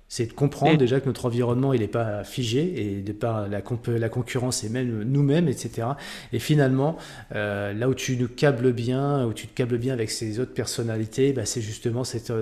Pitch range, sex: 110-130 Hz, male